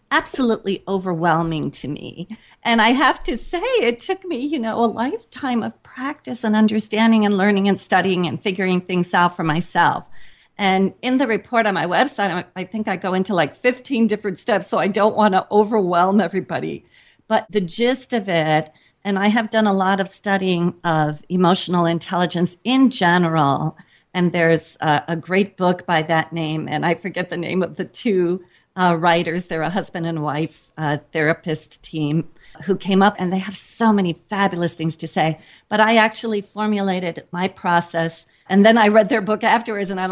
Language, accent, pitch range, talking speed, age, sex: English, American, 170-215 Hz, 185 wpm, 40-59, female